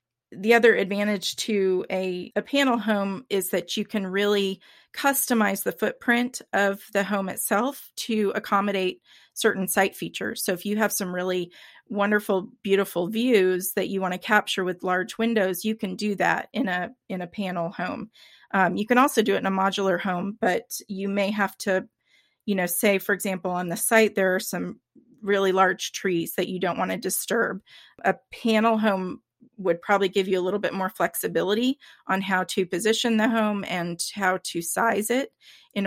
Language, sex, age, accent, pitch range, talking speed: English, female, 30-49, American, 185-225 Hz, 185 wpm